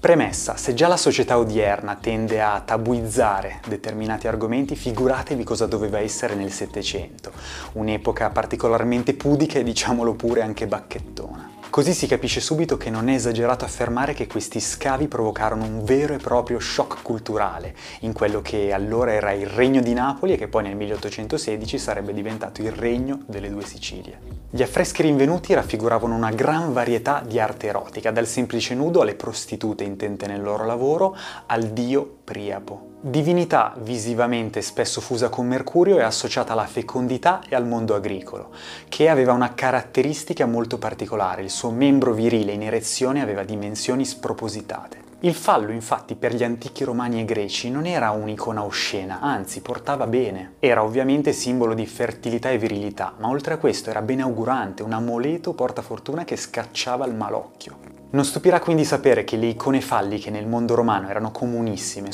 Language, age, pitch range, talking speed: Italian, 20-39, 105-130 Hz, 160 wpm